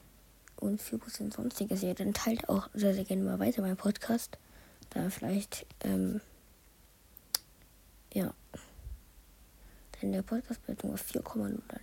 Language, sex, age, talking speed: German, female, 20-39, 115 wpm